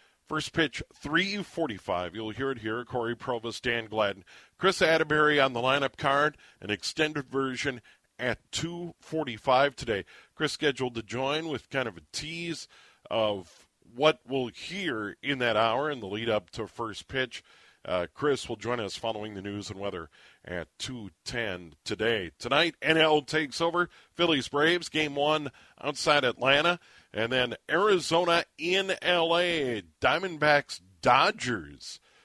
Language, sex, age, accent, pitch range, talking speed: English, male, 40-59, American, 110-150 Hz, 140 wpm